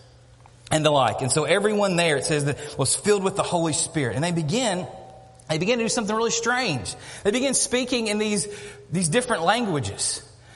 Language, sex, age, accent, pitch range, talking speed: English, male, 30-49, American, 175-250 Hz, 195 wpm